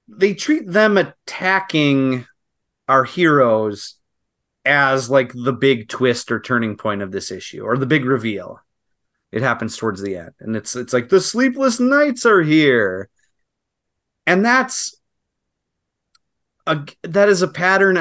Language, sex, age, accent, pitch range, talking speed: English, male, 30-49, American, 110-160 Hz, 140 wpm